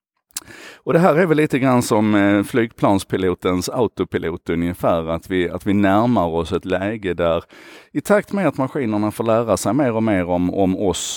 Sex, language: male, Swedish